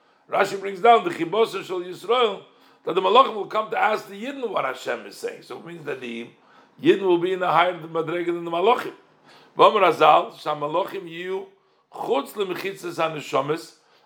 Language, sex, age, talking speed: English, male, 60-79, 150 wpm